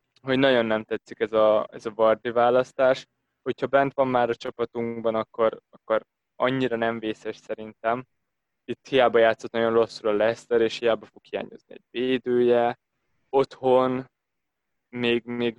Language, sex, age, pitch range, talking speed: Hungarian, male, 20-39, 110-130 Hz, 145 wpm